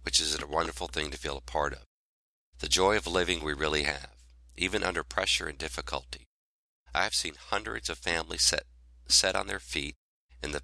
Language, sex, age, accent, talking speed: English, male, 50-69, American, 195 wpm